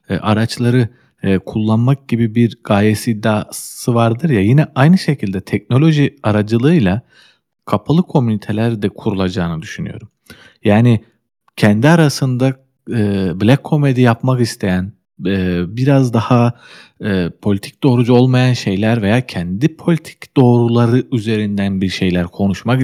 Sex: male